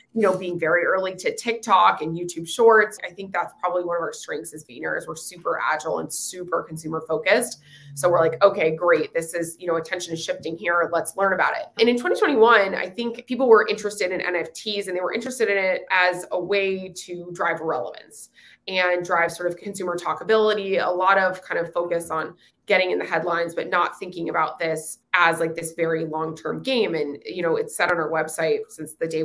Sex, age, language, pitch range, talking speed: female, 20-39, English, 160-195 Hz, 220 wpm